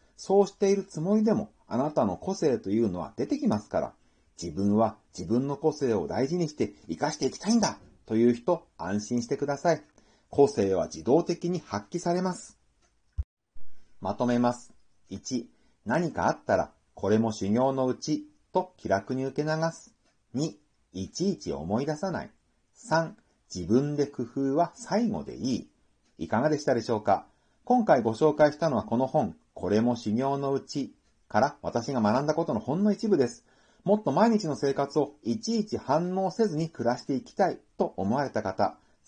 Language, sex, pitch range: Japanese, male, 115-175 Hz